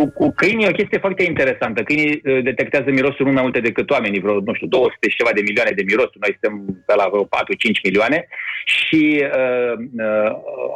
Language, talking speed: Romanian, 185 wpm